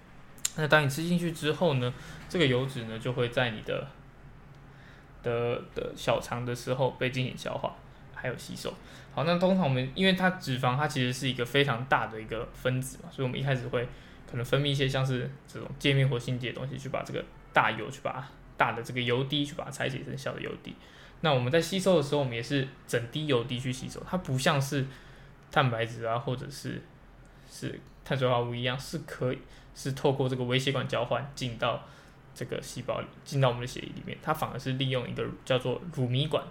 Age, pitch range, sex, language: 20-39, 125-145 Hz, male, Chinese